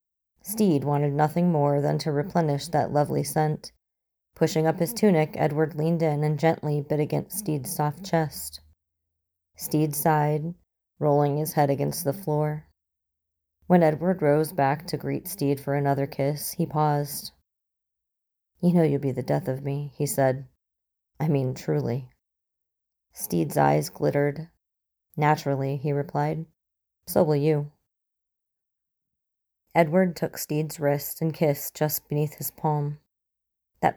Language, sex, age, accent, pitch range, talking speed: English, female, 30-49, American, 135-160 Hz, 135 wpm